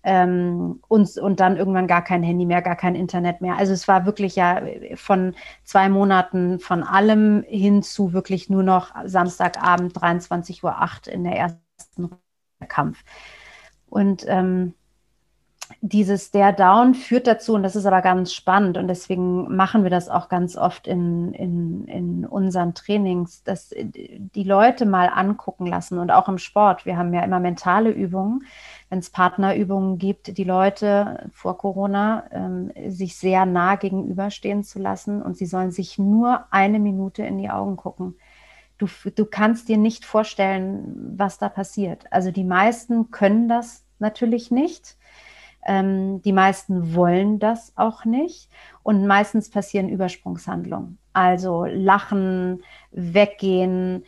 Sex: female